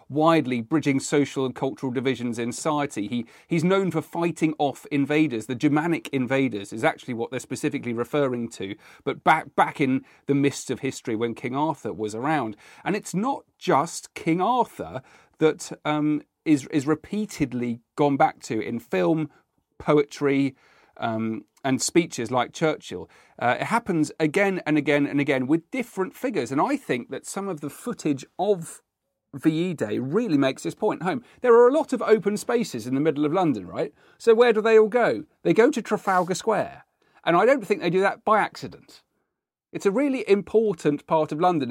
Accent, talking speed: British, 185 wpm